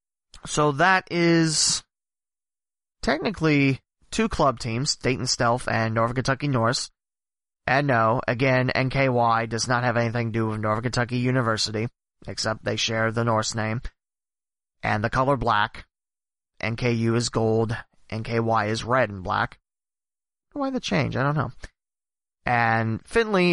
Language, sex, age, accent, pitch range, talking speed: English, male, 30-49, American, 110-145 Hz, 135 wpm